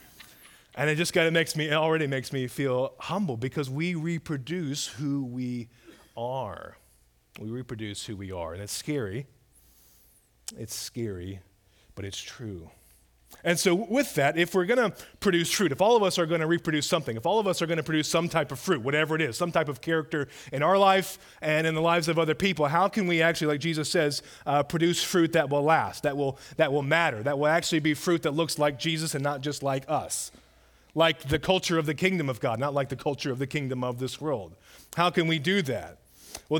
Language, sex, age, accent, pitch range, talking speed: English, male, 30-49, American, 130-165 Hz, 220 wpm